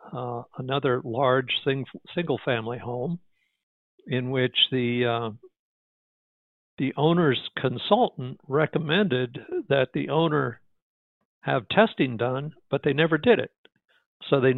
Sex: male